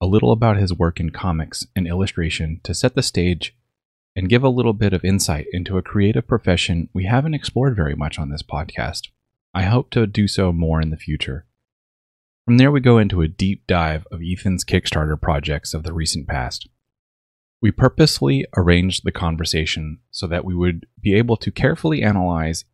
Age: 30-49